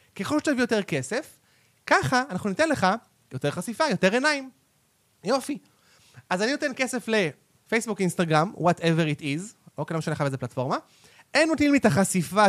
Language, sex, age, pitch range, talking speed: Hebrew, male, 30-49, 160-225 Hz, 155 wpm